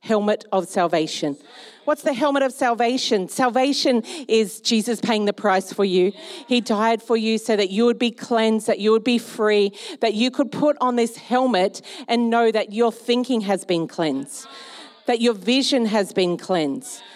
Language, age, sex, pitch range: English, 40-59, female, 200-240 Hz